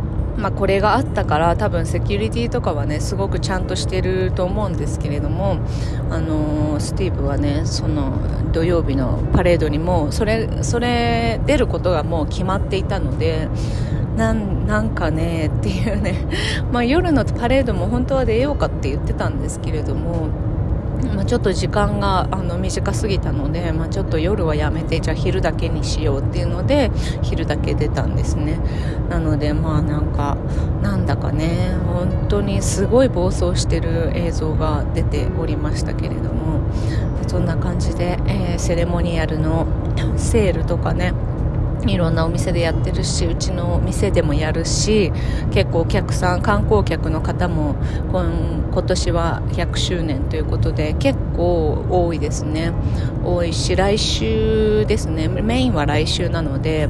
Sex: female